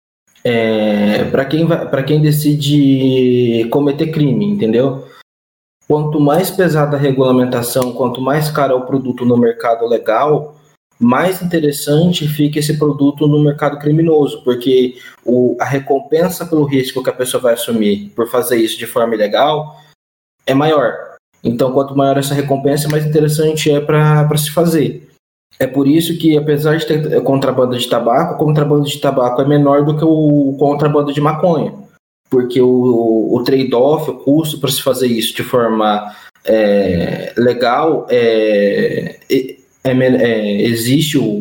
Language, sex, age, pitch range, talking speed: Portuguese, male, 20-39, 125-150 Hz, 135 wpm